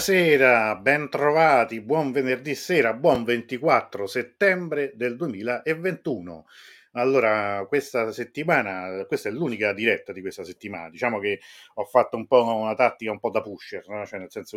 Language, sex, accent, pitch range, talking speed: Italian, male, native, 105-160 Hz, 150 wpm